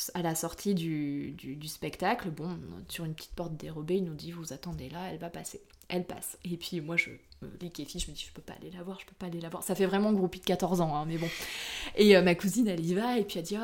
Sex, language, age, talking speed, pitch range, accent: female, French, 20-39, 290 wpm, 170-205 Hz, French